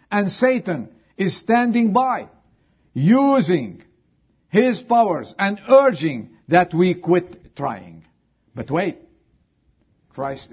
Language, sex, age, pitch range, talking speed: English, male, 50-69, 115-175 Hz, 95 wpm